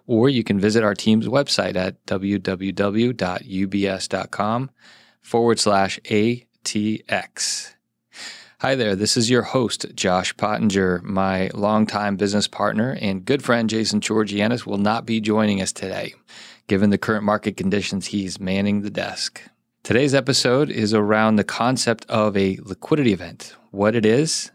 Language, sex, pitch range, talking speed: English, male, 100-115 Hz, 140 wpm